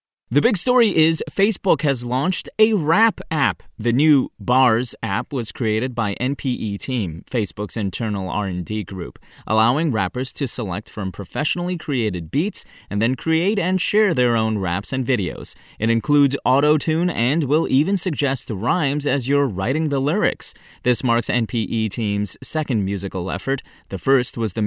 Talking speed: 160 wpm